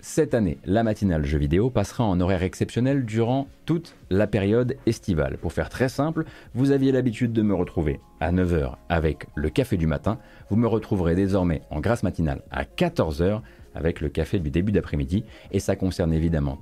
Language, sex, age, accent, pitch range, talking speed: French, male, 30-49, French, 85-115 Hz, 185 wpm